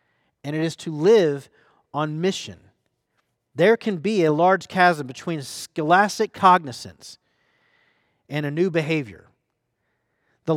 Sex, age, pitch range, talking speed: male, 40-59, 160-205 Hz, 120 wpm